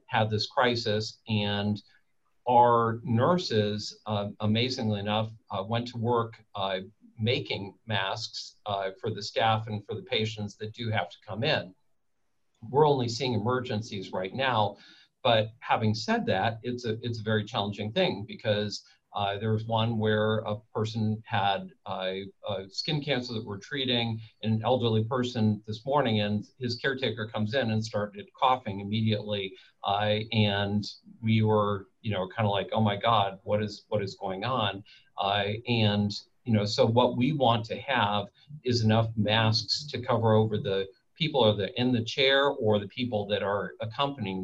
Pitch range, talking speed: 105-120 Hz, 165 wpm